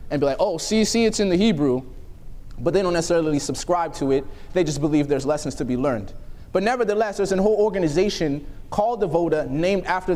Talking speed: 215 wpm